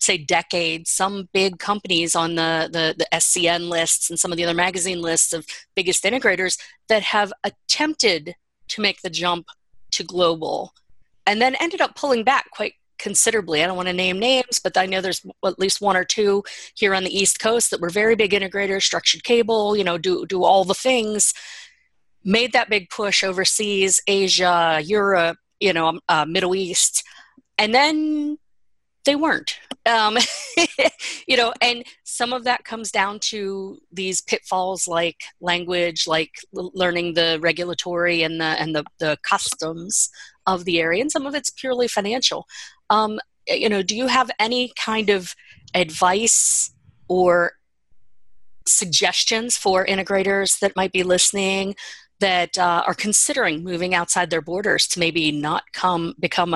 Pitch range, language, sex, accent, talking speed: 175-215 Hz, English, female, American, 160 wpm